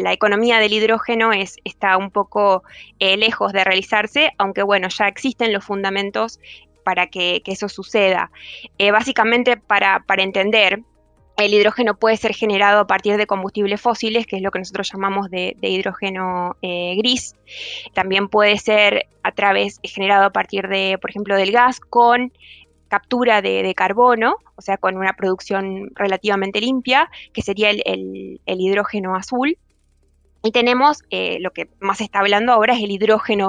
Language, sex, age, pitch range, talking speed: Spanish, female, 20-39, 195-230 Hz, 165 wpm